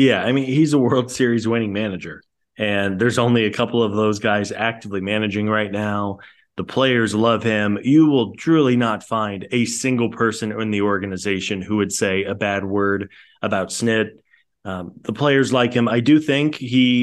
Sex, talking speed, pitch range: male, 185 wpm, 105-120 Hz